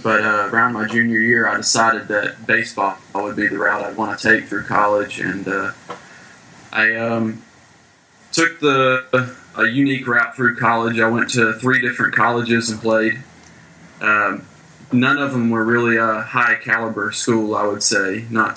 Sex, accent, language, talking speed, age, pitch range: male, American, English, 170 wpm, 20-39, 110-125 Hz